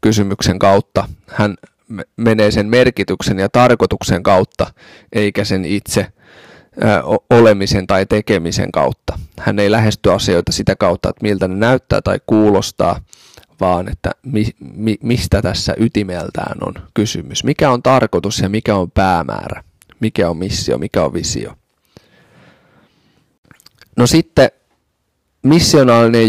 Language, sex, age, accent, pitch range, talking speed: Finnish, male, 30-49, native, 100-120 Hz, 115 wpm